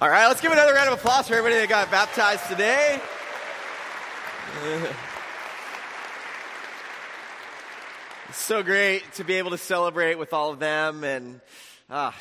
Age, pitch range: 30-49, 150-195 Hz